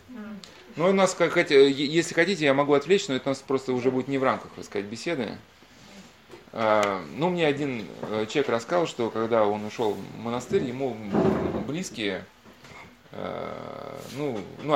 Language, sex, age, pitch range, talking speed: Russian, male, 20-39, 125-160 Hz, 140 wpm